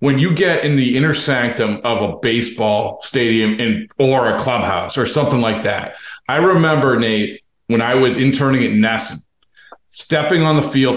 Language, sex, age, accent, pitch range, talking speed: English, male, 40-59, American, 115-145 Hz, 170 wpm